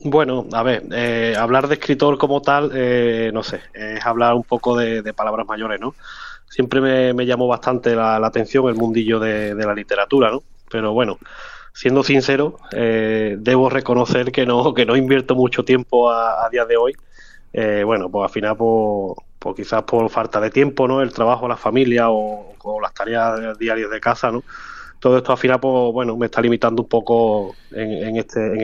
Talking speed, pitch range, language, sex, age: 200 wpm, 115-130 Hz, Spanish, male, 20-39